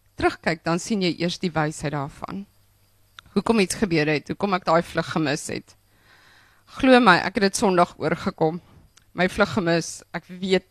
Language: Dutch